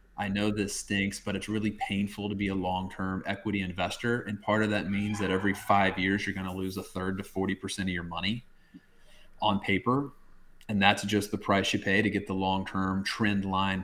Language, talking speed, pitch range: English, 215 wpm, 95-110 Hz